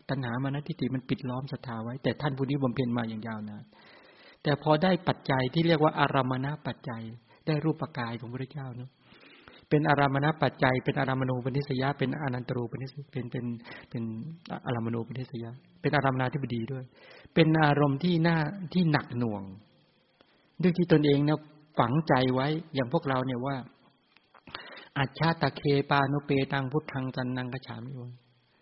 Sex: male